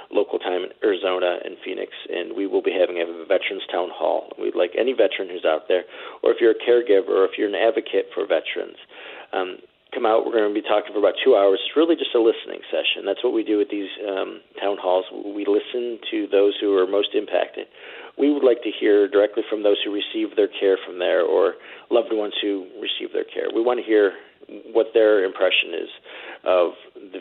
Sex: male